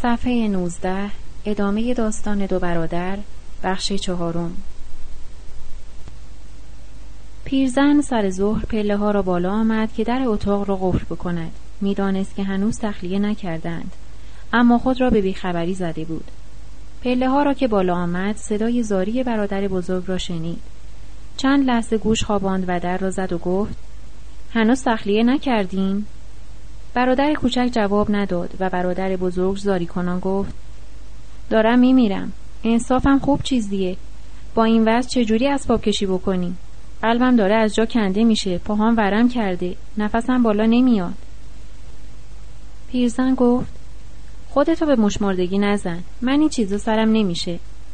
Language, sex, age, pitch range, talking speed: Persian, female, 30-49, 190-240 Hz, 130 wpm